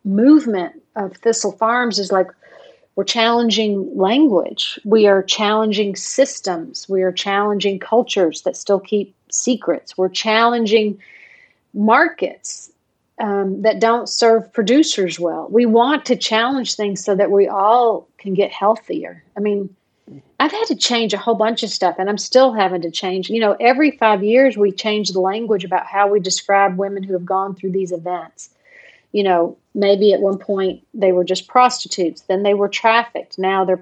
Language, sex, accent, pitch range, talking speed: English, female, American, 185-225 Hz, 170 wpm